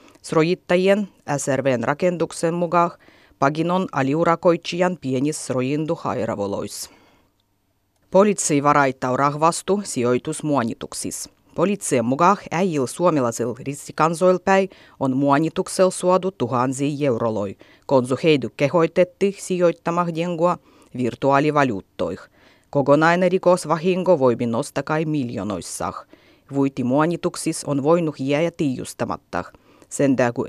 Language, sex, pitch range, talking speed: Finnish, female, 130-175 Hz, 80 wpm